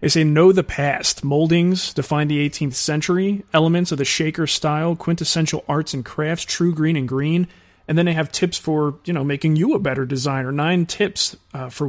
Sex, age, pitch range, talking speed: male, 30-49, 135-165 Hz, 200 wpm